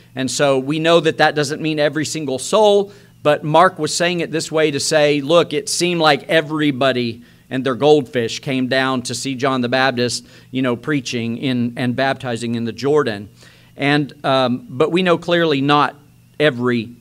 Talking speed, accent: 185 wpm, American